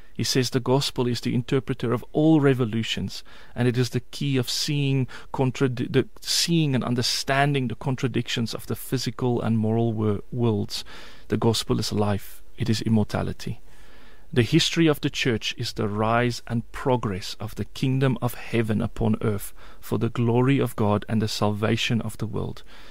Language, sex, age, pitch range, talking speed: English, male, 30-49, 110-130 Hz, 175 wpm